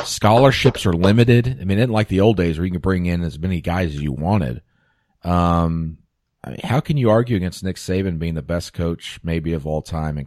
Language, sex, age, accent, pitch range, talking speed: English, male, 40-59, American, 85-130 Hz, 235 wpm